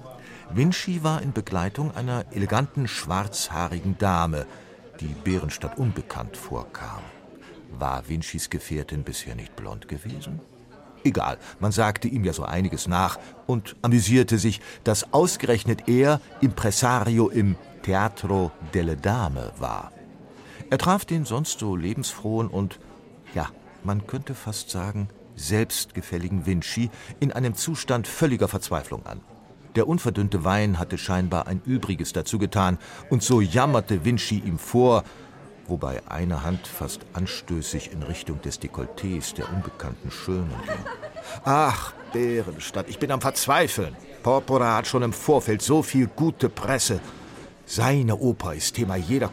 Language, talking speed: German, 130 wpm